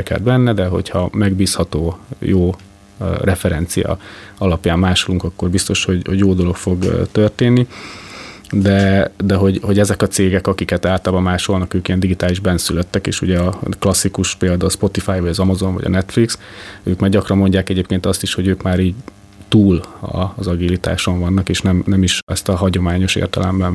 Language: Hungarian